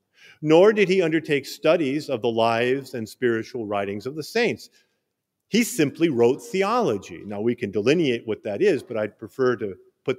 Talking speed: 175 wpm